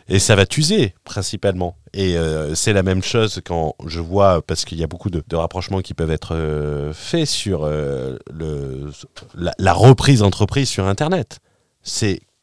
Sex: male